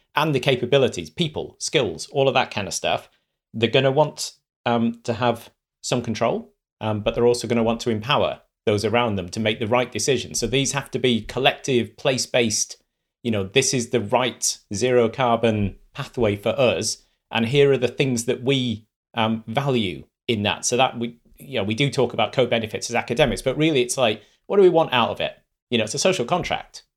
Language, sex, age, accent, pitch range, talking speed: English, male, 30-49, British, 110-135 Hz, 215 wpm